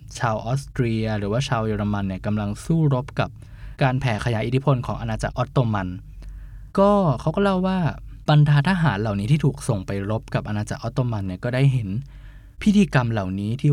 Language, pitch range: Thai, 110-140 Hz